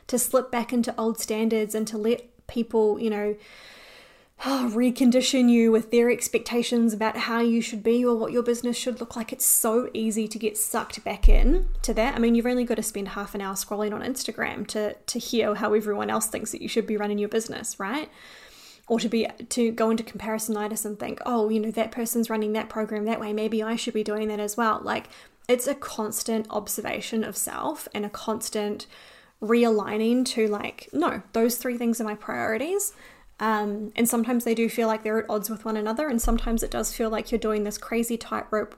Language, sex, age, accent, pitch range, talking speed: English, female, 20-39, Australian, 215-235 Hz, 215 wpm